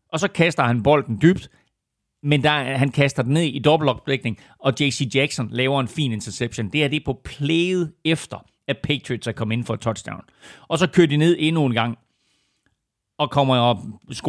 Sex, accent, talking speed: male, native, 195 wpm